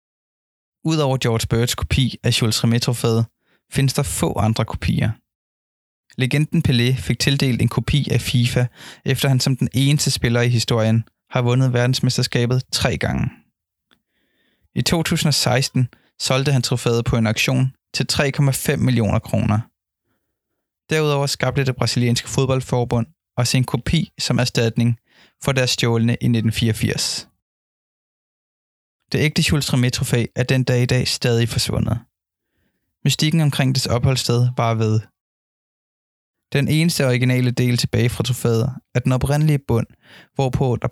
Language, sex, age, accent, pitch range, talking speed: Danish, male, 20-39, native, 115-135 Hz, 130 wpm